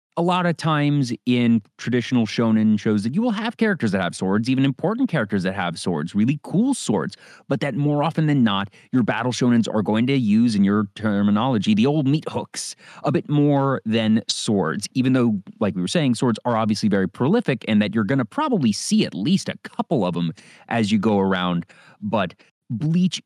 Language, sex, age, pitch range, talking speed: English, male, 30-49, 105-155 Hz, 205 wpm